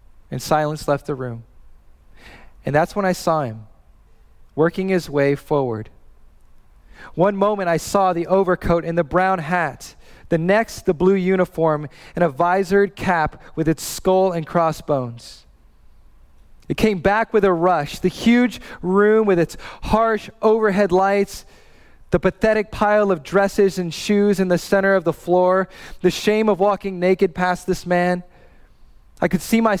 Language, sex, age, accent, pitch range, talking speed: English, male, 20-39, American, 140-195 Hz, 155 wpm